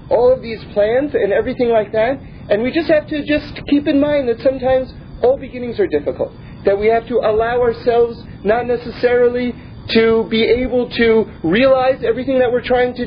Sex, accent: male, American